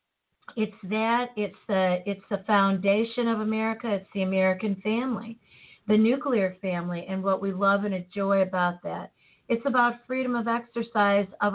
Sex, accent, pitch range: female, American, 190-230 Hz